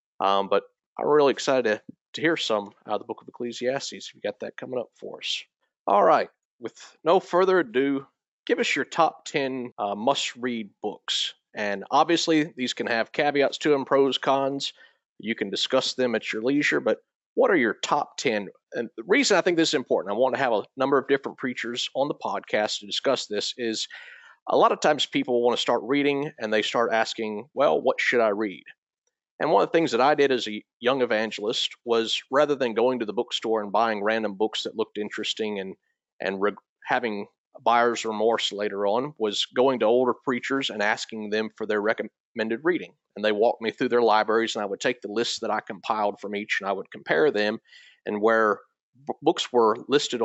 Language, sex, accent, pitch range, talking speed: English, male, American, 105-135 Hz, 210 wpm